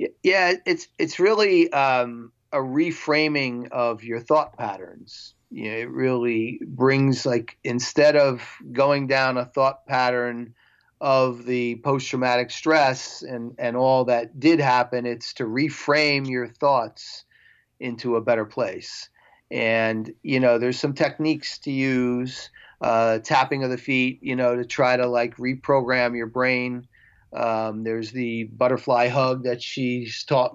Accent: American